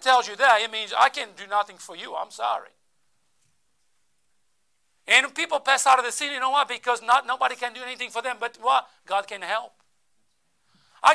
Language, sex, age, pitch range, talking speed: English, male, 50-69, 200-260 Hz, 205 wpm